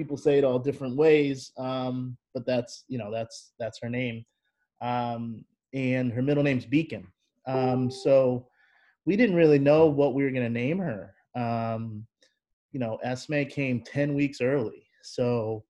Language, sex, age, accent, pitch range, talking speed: English, male, 30-49, American, 120-145 Hz, 165 wpm